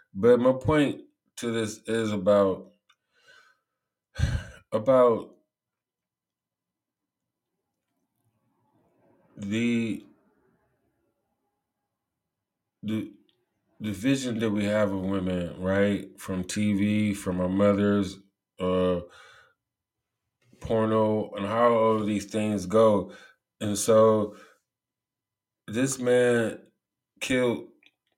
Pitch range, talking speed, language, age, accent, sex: 105-120 Hz, 80 wpm, English, 20-39, American, male